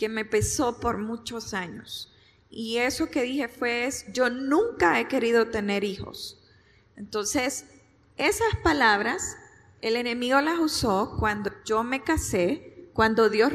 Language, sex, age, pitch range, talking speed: Spanish, female, 10-29, 210-250 Hz, 135 wpm